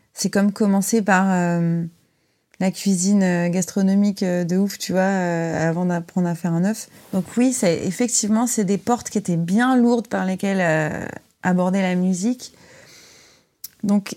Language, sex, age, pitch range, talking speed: French, female, 30-49, 185-215 Hz, 155 wpm